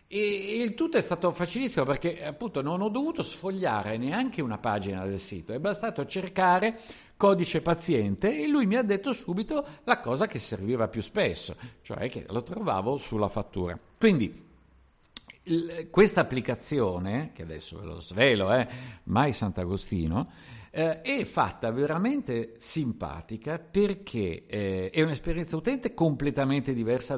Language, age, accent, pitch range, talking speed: Italian, 50-69, native, 110-180 Hz, 140 wpm